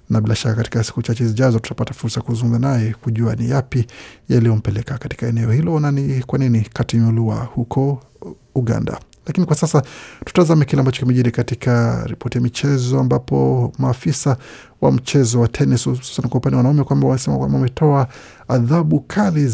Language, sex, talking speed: Swahili, male, 165 wpm